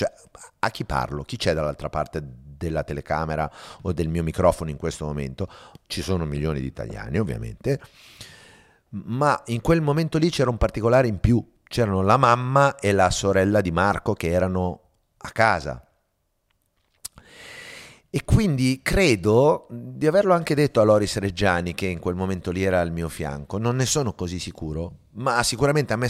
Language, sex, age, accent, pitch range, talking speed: Italian, male, 30-49, native, 80-110 Hz, 170 wpm